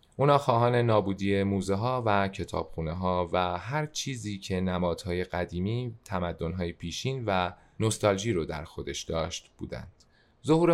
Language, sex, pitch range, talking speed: Persian, male, 90-110 Hz, 140 wpm